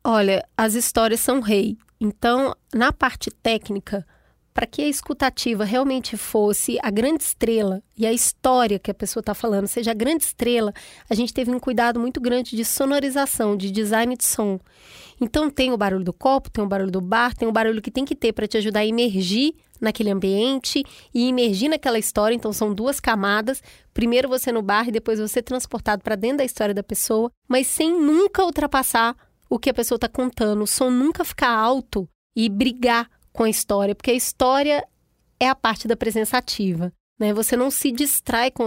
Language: Portuguese